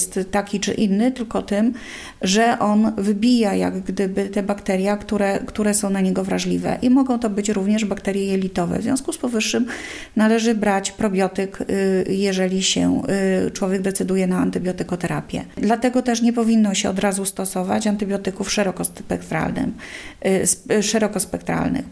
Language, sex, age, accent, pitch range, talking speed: Polish, female, 30-49, native, 195-220 Hz, 130 wpm